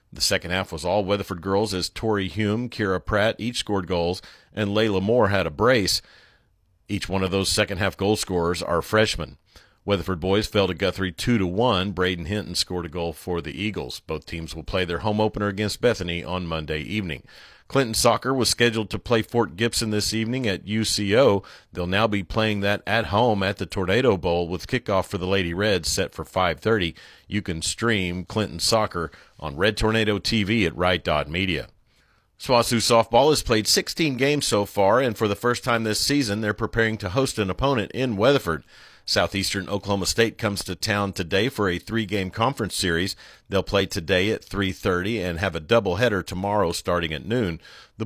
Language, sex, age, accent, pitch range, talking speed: English, male, 40-59, American, 90-110 Hz, 190 wpm